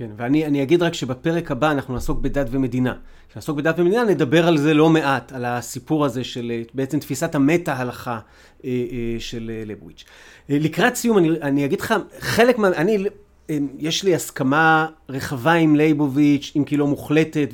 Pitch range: 135-175 Hz